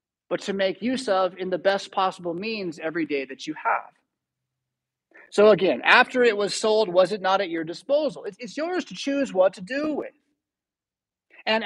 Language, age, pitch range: English, 30-49, 185-280 Hz